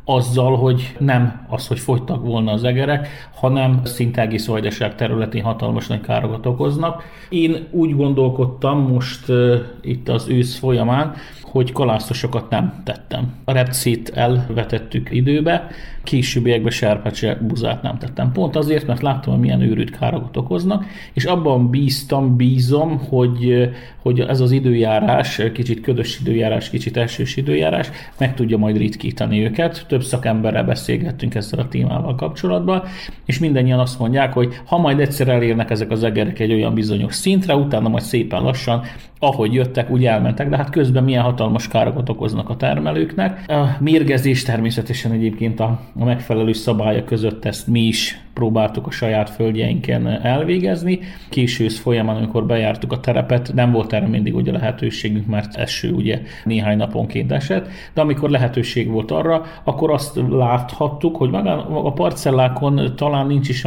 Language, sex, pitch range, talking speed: Hungarian, male, 110-135 Hz, 145 wpm